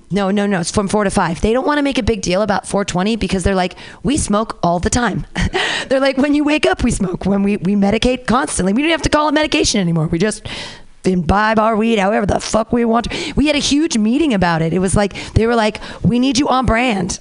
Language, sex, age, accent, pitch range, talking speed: English, female, 30-49, American, 190-250 Hz, 260 wpm